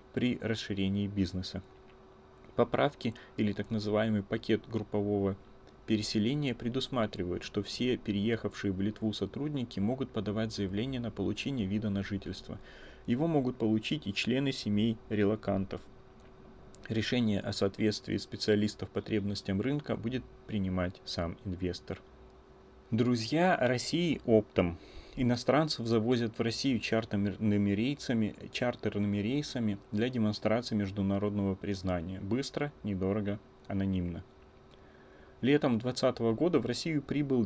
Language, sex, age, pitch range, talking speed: Russian, male, 30-49, 100-120 Hz, 105 wpm